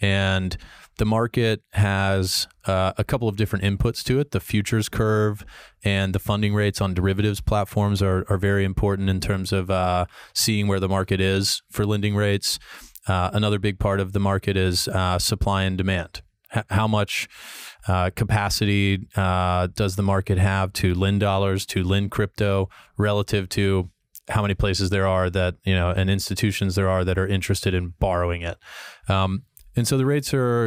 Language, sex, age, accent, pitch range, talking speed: English, male, 30-49, American, 95-110 Hz, 180 wpm